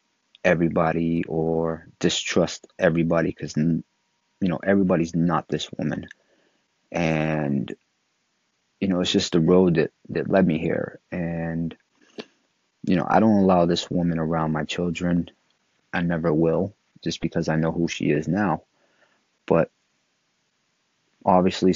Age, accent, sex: 30-49, American, male